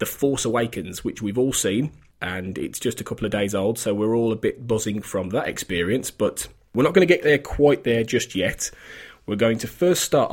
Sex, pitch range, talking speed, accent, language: male, 110-145 Hz, 230 wpm, British, English